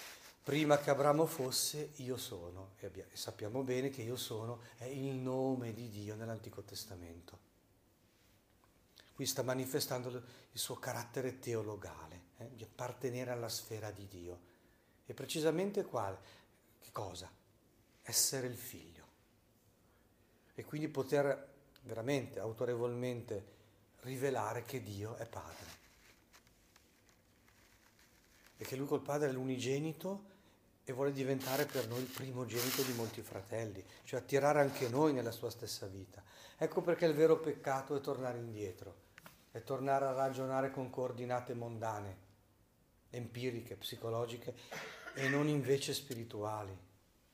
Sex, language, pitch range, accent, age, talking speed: male, Italian, 105-135 Hz, native, 40-59, 125 wpm